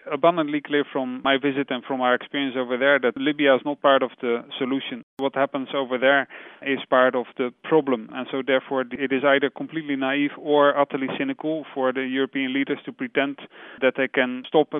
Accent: Dutch